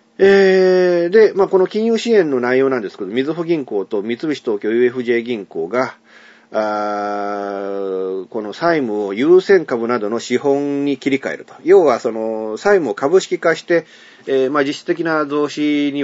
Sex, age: male, 40-59